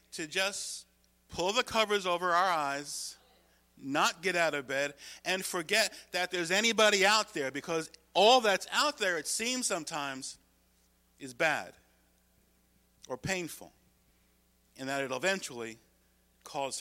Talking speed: 130 wpm